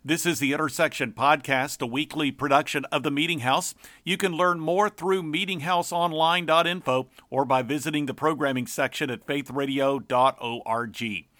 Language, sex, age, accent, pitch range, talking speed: English, male, 50-69, American, 135-165 Hz, 135 wpm